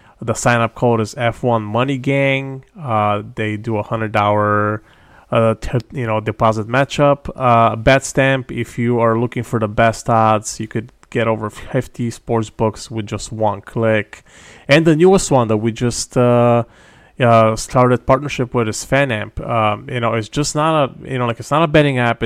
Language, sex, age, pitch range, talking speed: English, male, 20-39, 110-125 Hz, 190 wpm